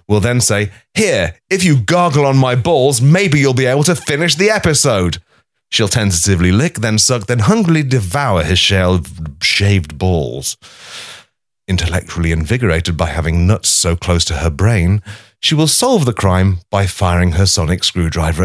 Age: 30-49